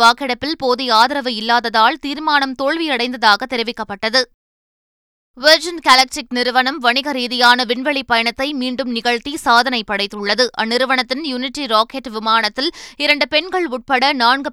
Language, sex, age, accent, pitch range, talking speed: Tamil, female, 20-39, native, 235-275 Hz, 105 wpm